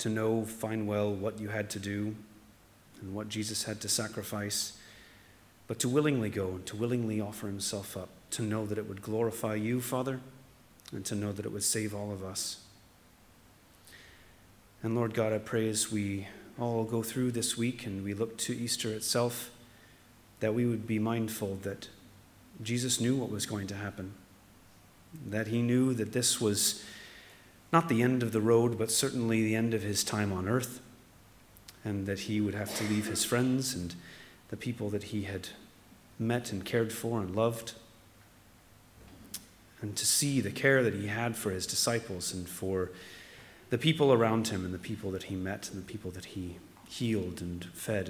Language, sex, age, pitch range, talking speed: English, male, 30-49, 100-115 Hz, 185 wpm